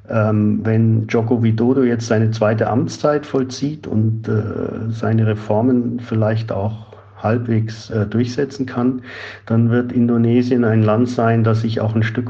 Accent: German